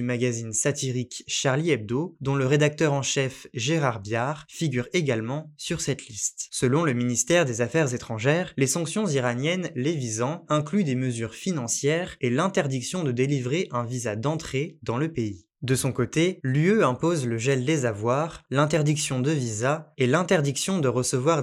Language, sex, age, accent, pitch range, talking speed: French, male, 20-39, French, 125-165 Hz, 160 wpm